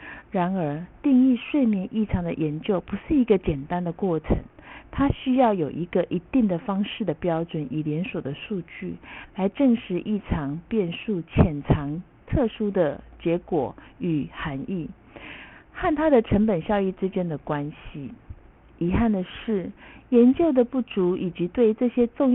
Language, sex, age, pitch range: Chinese, female, 50-69, 180-245 Hz